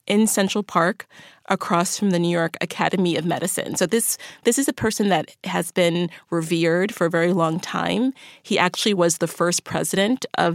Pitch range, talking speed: 170-200 Hz, 190 wpm